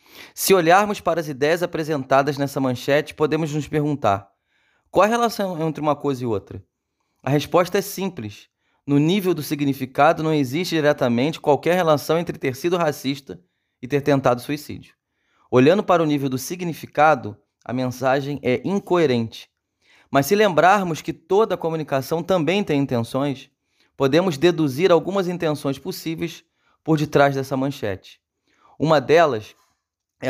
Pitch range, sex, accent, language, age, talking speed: 130-165 Hz, male, Brazilian, Portuguese, 20-39, 140 wpm